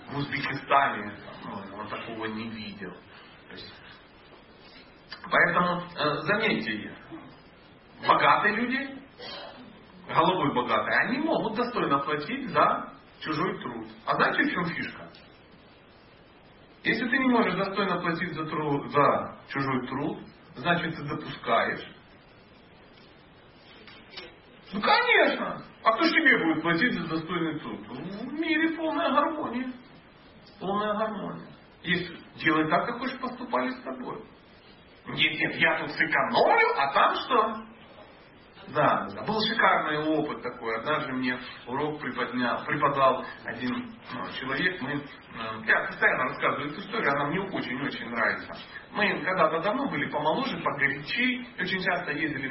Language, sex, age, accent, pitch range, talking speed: Russian, male, 40-59, native, 140-210 Hz, 120 wpm